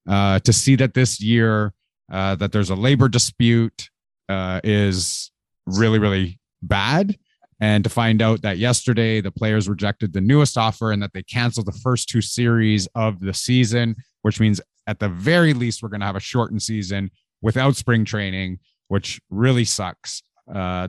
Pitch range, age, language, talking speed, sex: 100-115 Hz, 30-49, English, 170 wpm, male